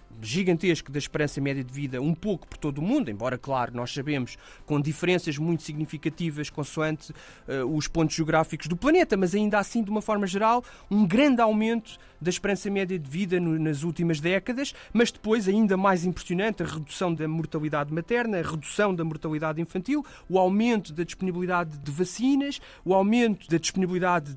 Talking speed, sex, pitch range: 175 wpm, male, 150-210 Hz